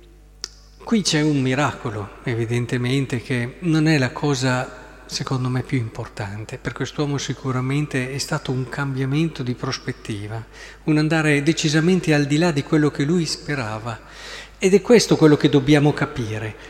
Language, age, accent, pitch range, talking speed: Italian, 50-69, native, 140-195 Hz, 145 wpm